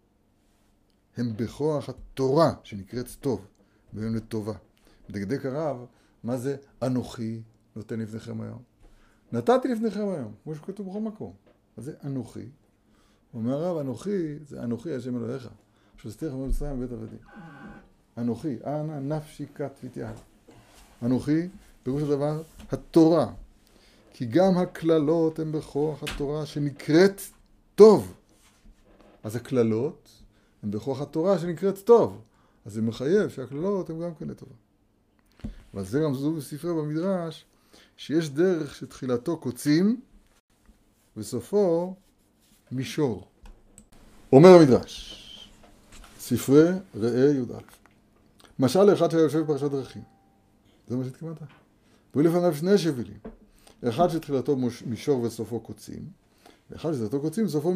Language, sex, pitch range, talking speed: Hebrew, male, 110-155 Hz, 105 wpm